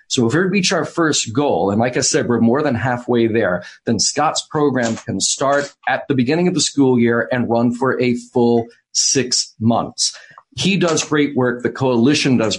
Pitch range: 120-150 Hz